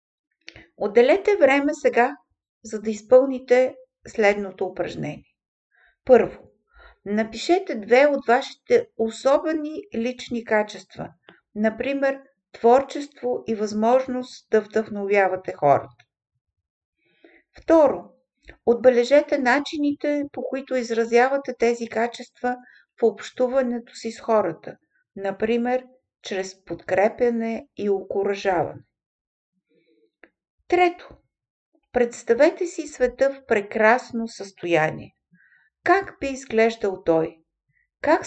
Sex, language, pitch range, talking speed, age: female, Bulgarian, 210-275 Hz, 85 wpm, 50-69